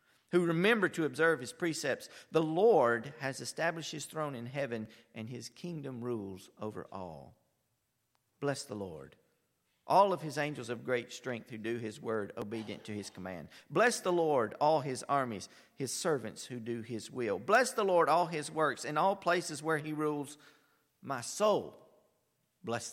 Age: 50-69